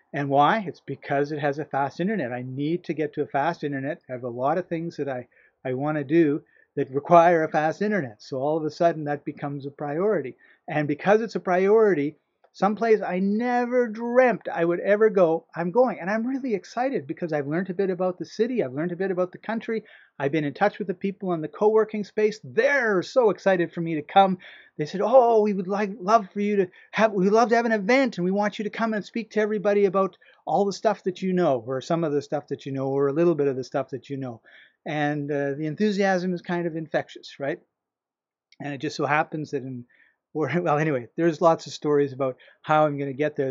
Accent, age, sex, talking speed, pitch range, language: American, 40-59, male, 245 wpm, 145-205 Hz, English